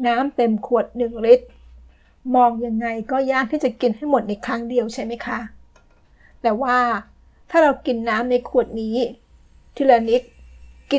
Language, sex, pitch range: Thai, female, 220-255 Hz